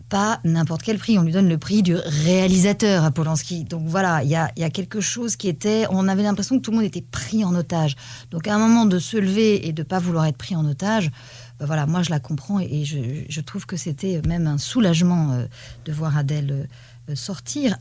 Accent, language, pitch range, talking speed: French, French, 150-205 Hz, 230 wpm